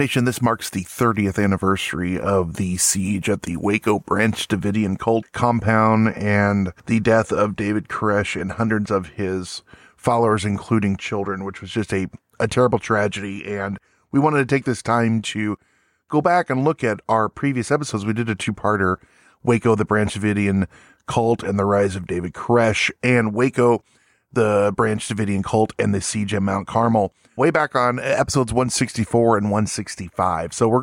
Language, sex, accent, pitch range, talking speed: English, male, American, 100-120 Hz, 170 wpm